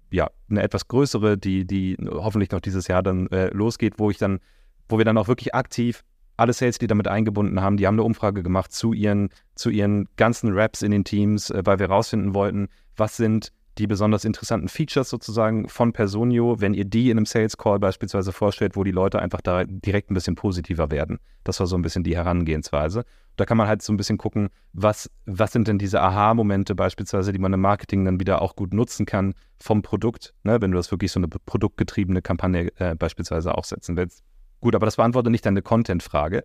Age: 30-49